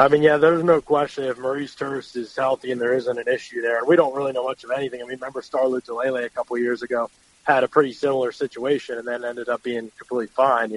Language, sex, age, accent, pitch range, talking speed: English, male, 20-39, American, 120-145 Hz, 265 wpm